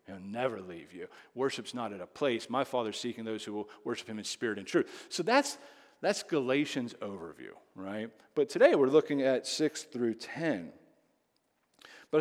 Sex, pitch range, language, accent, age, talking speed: male, 120-185 Hz, English, American, 40-59, 175 wpm